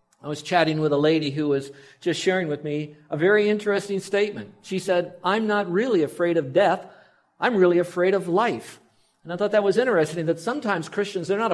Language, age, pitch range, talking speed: English, 50-69, 150-190 Hz, 210 wpm